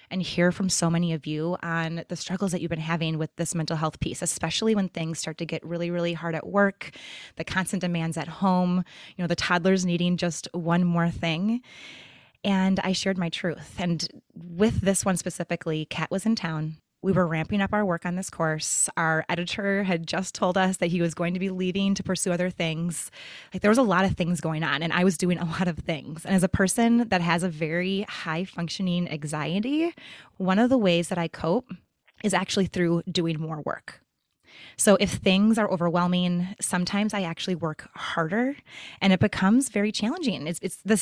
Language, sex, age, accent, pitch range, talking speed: English, female, 20-39, American, 170-195 Hz, 210 wpm